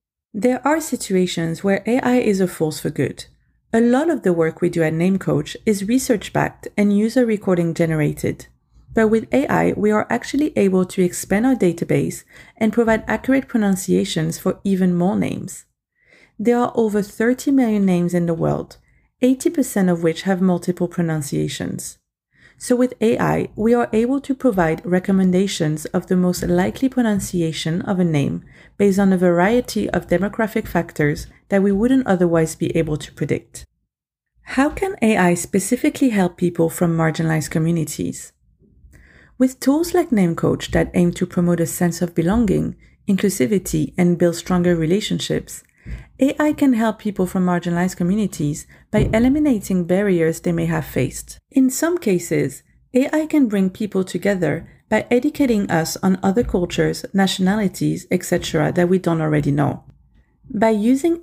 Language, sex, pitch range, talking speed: English, female, 175-235 Hz, 150 wpm